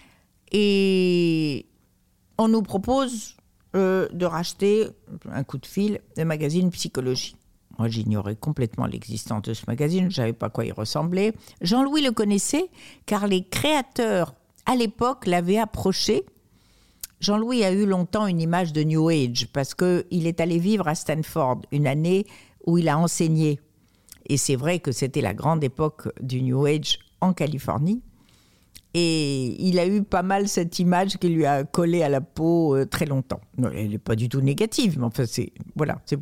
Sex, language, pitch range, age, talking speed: female, French, 130-185 Hz, 60-79, 170 wpm